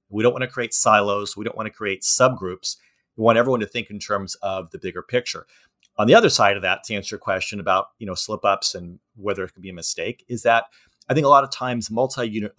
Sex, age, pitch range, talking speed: male, 40-59, 100-125 Hz, 260 wpm